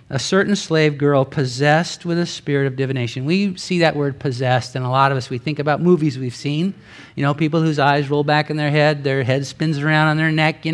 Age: 50-69